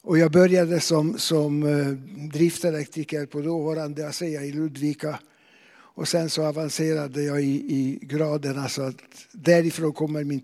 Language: English